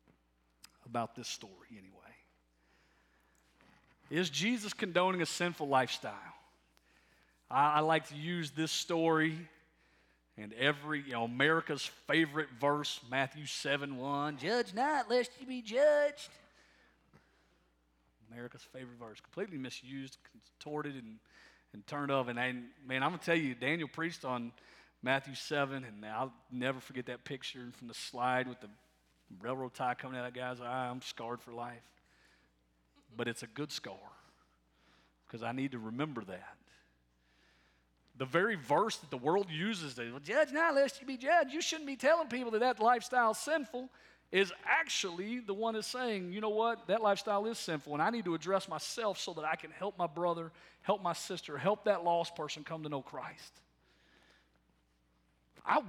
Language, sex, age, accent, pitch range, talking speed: English, male, 40-59, American, 115-195 Hz, 160 wpm